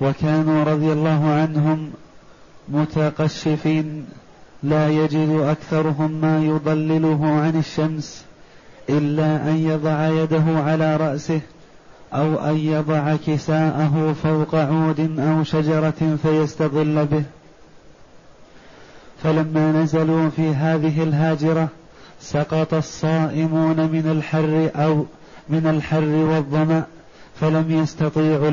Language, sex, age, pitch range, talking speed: Arabic, male, 30-49, 155-160 Hz, 90 wpm